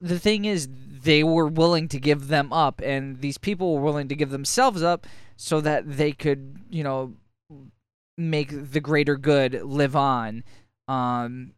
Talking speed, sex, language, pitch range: 165 wpm, male, English, 130-160 Hz